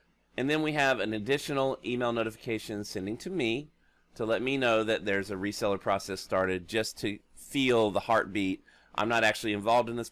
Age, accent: 30-49, American